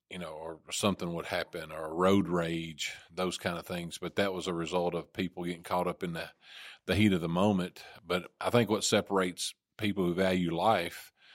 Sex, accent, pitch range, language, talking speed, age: male, American, 85-100 Hz, English, 210 wpm, 40-59